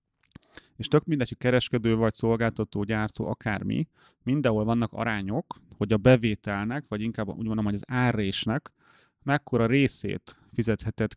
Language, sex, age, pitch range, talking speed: Hungarian, male, 30-49, 105-125 Hz, 135 wpm